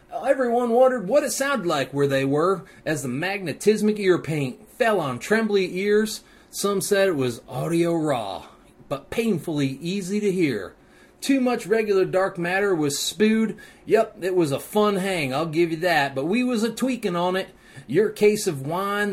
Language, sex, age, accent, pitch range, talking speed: English, male, 30-49, American, 160-210 Hz, 175 wpm